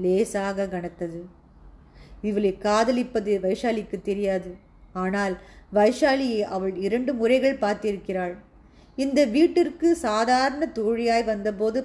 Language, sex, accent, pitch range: Tamil, female, native, 190-235 Hz